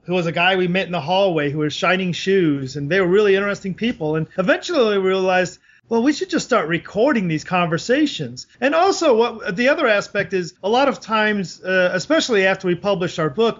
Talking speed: 215 wpm